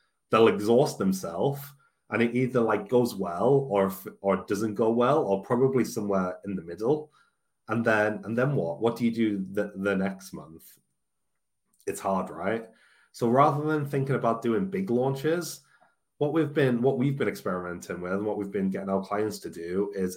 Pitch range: 100-140 Hz